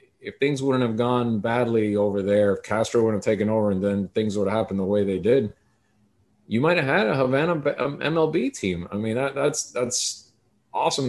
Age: 30-49